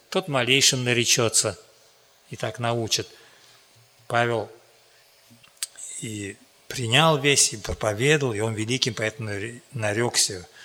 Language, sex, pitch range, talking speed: Russian, male, 110-140 Hz, 95 wpm